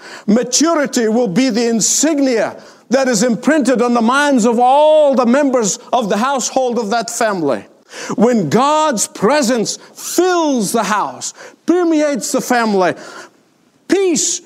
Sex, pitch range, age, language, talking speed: male, 185-270 Hz, 50-69, English, 130 wpm